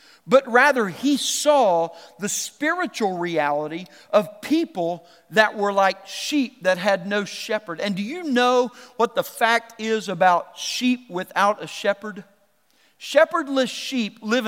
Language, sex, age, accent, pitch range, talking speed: English, male, 50-69, American, 210-285 Hz, 135 wpm